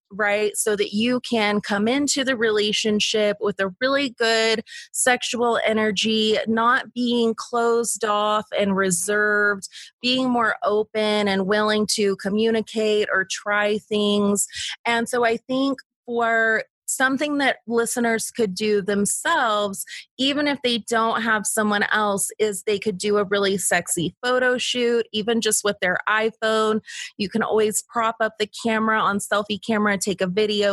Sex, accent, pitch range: female, American, 205-230 Hz